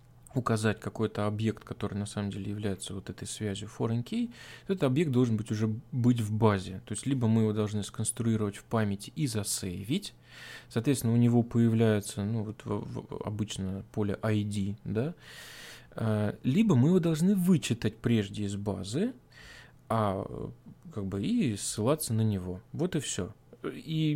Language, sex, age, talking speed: Russian, male, 20-39, 150 wpm